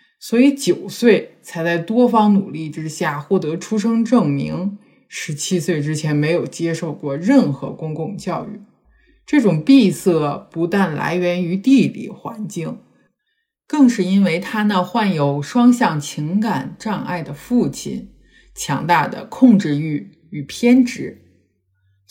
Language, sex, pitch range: Chinese, male, 160-225 Hz